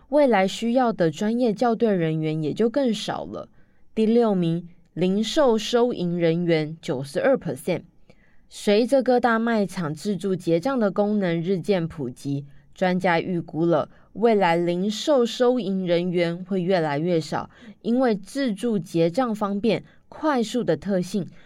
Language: Chinese